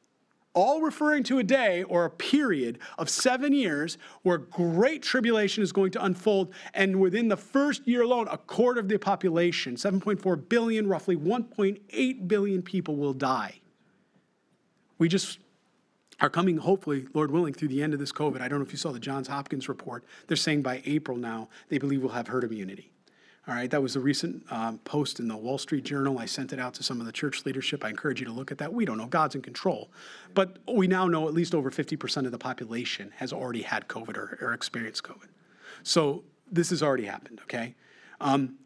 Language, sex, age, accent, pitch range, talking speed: English, male, 40-59, American, 135-190 Hz, 205 wpm